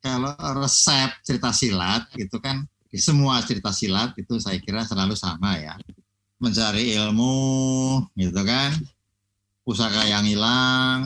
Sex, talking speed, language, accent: male, 125 wpm, Indonesian, native